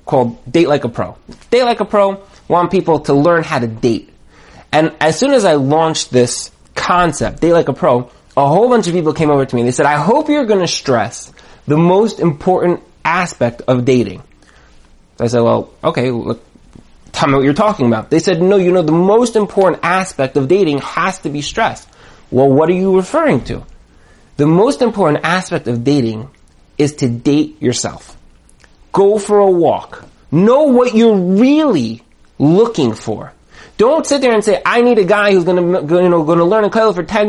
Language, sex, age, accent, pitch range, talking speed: English, male, 30-49, American, 140-200 Hz, 200 wpm